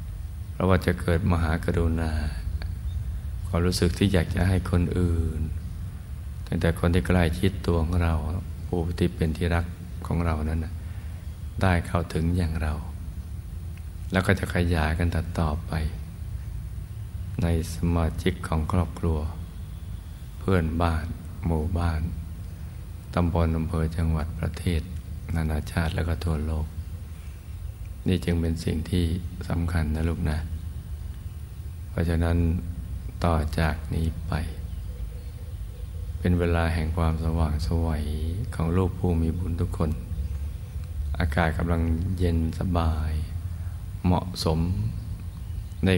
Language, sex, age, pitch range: Thai, male, 60-79, 80-90 Hz